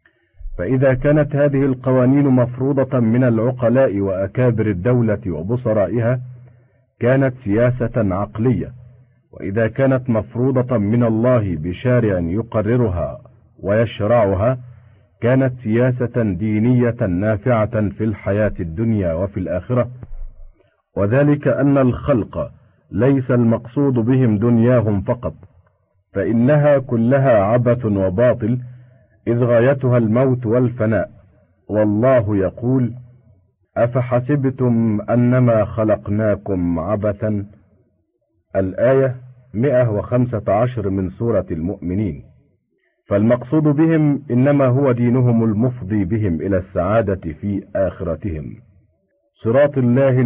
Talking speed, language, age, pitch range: 85 wpm, Arabic, 50-69, 100-125 Hz